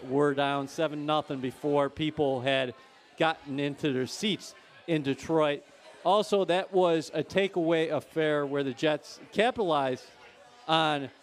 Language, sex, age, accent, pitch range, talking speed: English, male, 40-59, American, 155-210 Hz, 125 wpm